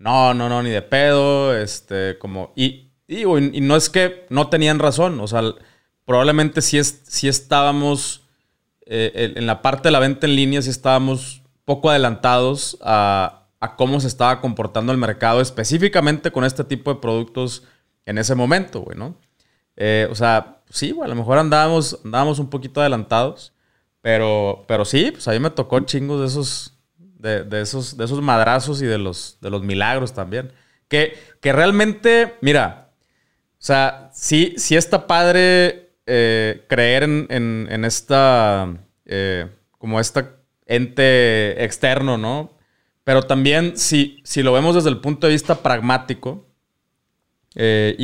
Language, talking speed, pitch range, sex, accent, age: Spanish, 160 wpm, 115-145 Hz, male, Mexican, 20-39